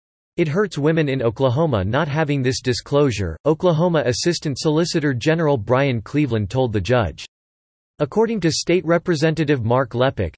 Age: 40-59